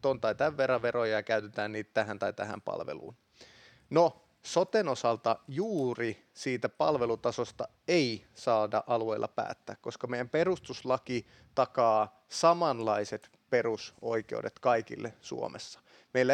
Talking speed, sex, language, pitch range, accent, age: 110 wpm, male, Finnish, 110-135 Hz, native, 30-49